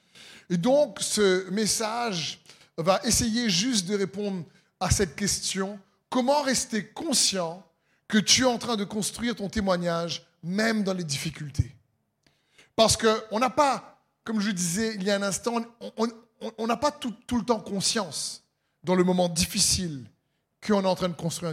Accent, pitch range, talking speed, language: French, 160-210 Hz, 160 wpm, French